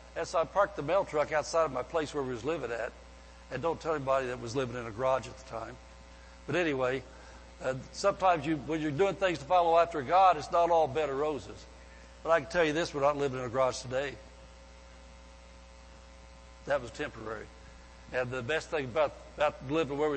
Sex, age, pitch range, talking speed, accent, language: male, 60-79, 115-165 Hz, 215 wpm, American, English